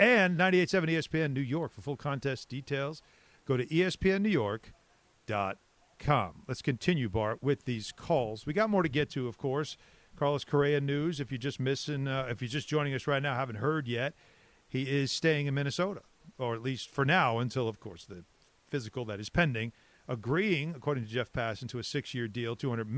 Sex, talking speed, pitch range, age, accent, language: male, 190 wpm, 120-155 Hz, 40-59, American, English